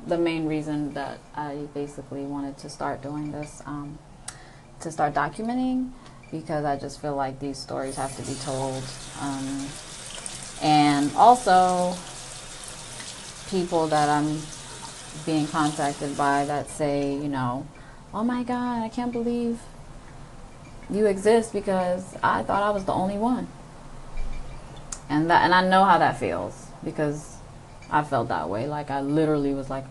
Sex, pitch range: female, 140-165 Hz